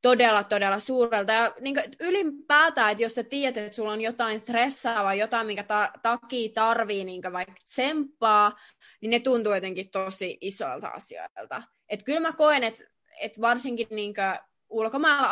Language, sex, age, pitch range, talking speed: Finnish, female, 20-39, 200-245 Hz, 150 wpm